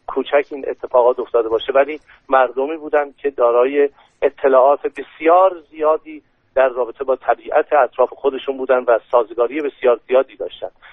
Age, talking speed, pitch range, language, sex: 50-69, 135 wpm, 120-145 Hz, Persian, male